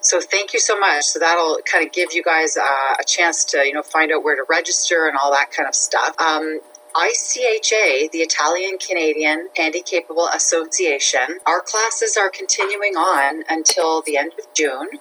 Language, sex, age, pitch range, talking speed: English, female, 30-49, 145-190 Hz, 185 wpm